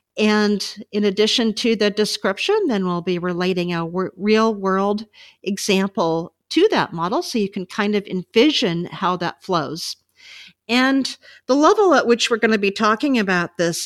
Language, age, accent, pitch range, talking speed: English, 50-69, American, 185-235 Hz, 160 wpm